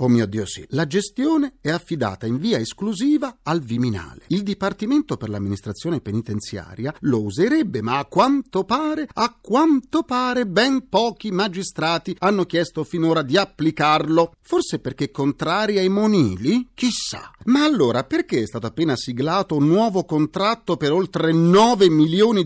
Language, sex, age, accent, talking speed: Italian, male, 40-59, native, 145 wpm